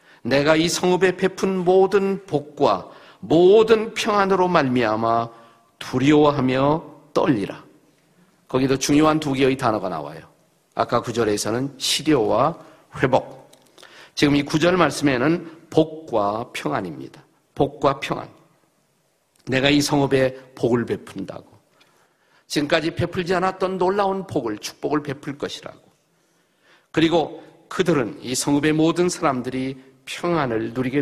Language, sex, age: Korean, male, 50-69